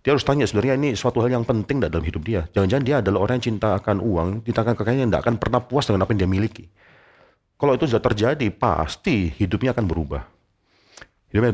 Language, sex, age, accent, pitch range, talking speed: Indonesian, male, 40-59, native, 90-120 Hz, 215 wpm